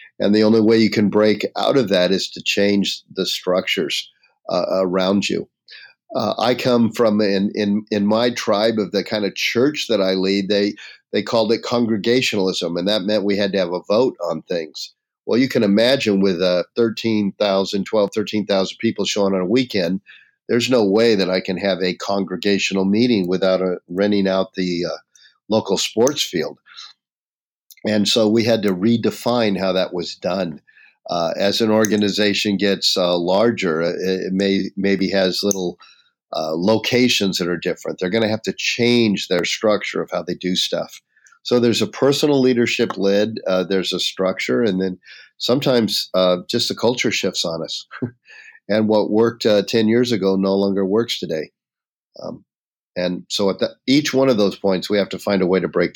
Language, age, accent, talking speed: English, 50-69, American, 185 wpm